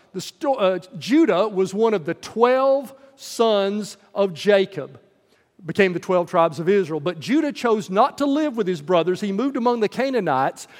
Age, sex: 40-59, male